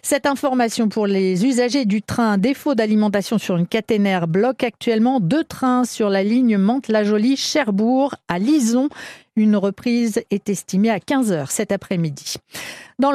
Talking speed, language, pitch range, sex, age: 140 wpm, French, 175-240 Hz, female, 50-69